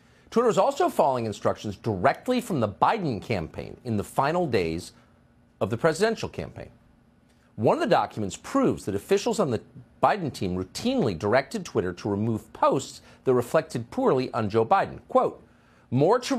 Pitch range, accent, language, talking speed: 100-165 Hz, American, English, 160 wpm